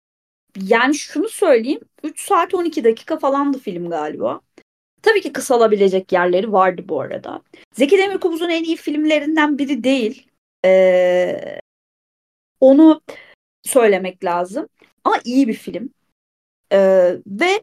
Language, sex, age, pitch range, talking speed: Turkish, female, 30-49, 225-330 Hz, 120 wpm